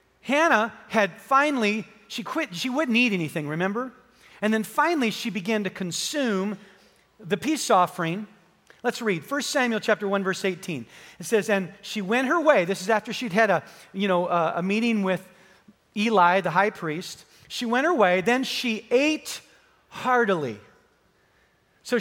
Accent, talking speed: American, 165 wpm